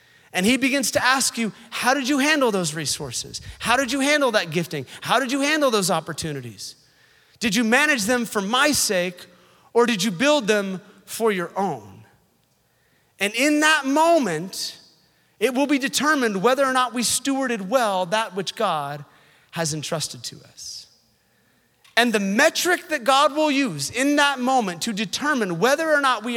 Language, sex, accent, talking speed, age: English, male, American, 175 wpm, 30-49